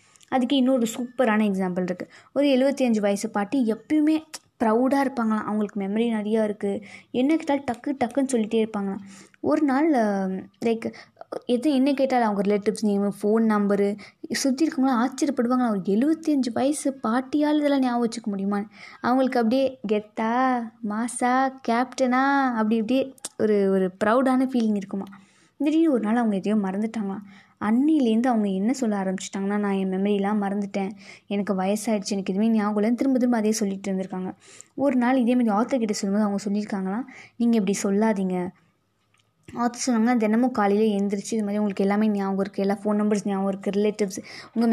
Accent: native